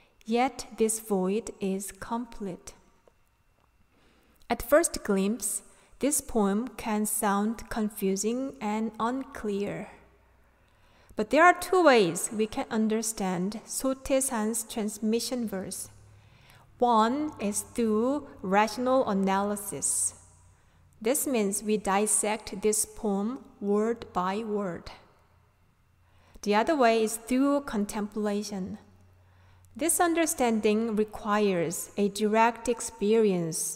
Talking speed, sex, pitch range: 95 wpm, female, 195-245 Hz